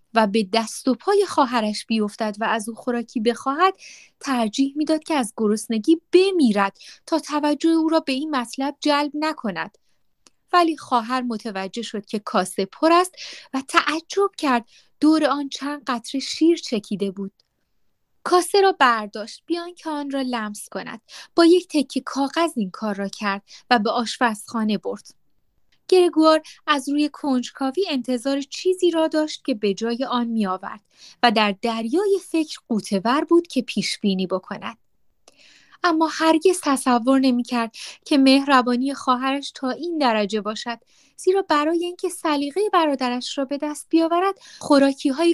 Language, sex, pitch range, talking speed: Persian, female, 230-315 Hz, 145 wpm